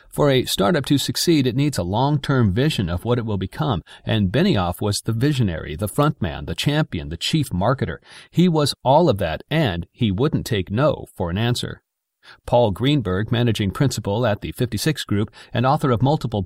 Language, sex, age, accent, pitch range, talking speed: English, male, 40-59, American, 100-135 Hz, 195 wpm